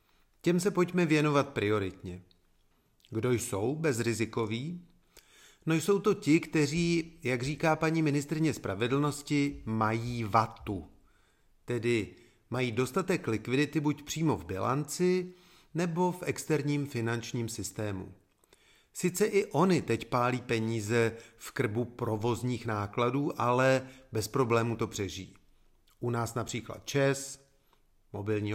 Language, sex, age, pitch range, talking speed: Czech, male, 40-59, 110-150 Hz, 110 wpm